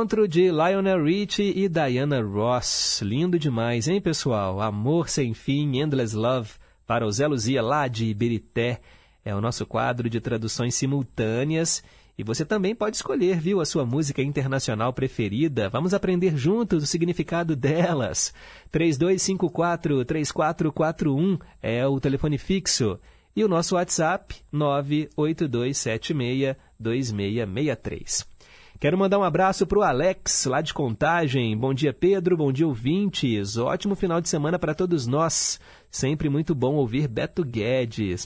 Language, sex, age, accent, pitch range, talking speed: Portuguese, male, 40-59, Brazilian, 120-170 Hz, 135 wpm